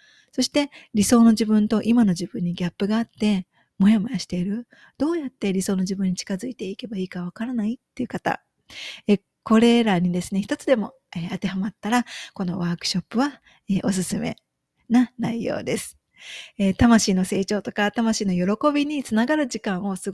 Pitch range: 195-245 Hz